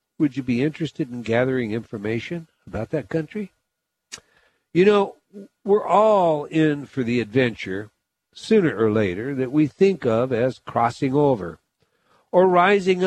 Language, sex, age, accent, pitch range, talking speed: English, male, 60-79, American, 125-170 Hz, 140 wpm